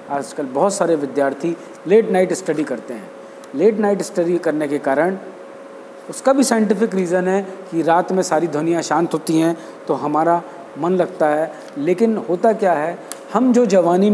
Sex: male